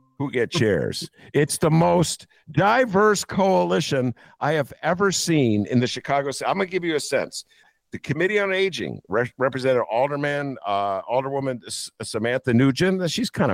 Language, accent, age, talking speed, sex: English, American, 50-69, 150 wpm, male